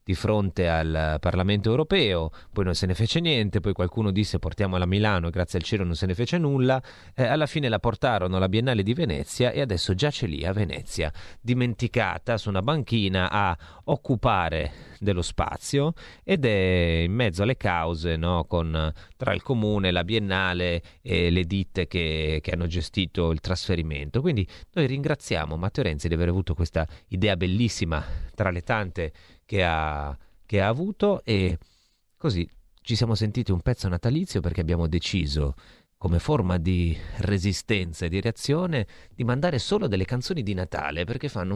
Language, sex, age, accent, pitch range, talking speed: Italian, male, 30-49, native, 90-120 Hz, 165 wpm